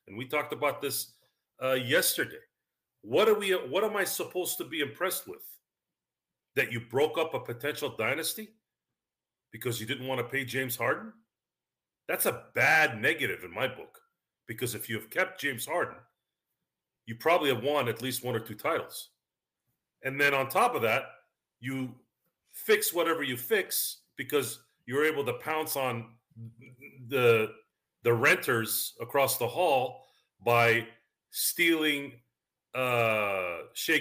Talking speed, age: 145 wpm, 40-59